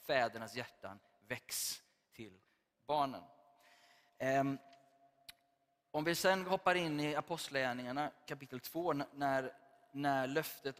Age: 20-39